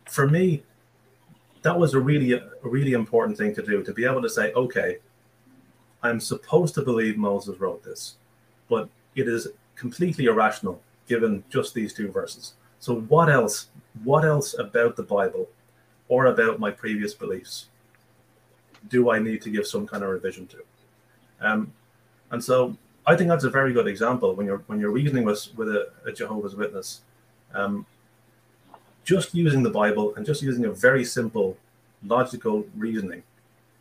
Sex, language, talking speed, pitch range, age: male, English, 160 wpm, 110-155 Hz, 30-49